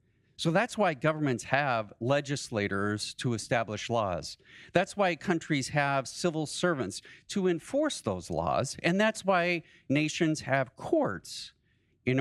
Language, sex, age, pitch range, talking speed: English, male, 40-59, 105-145 Hz, 130 wpm